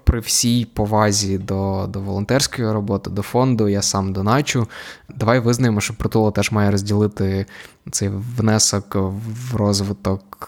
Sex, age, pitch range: male, 20-39, 105-120 Hz